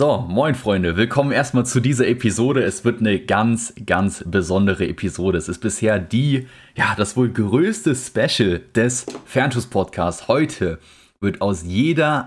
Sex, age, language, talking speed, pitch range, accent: male, 30-49, German, 150 wpm, 100-125 Hz, German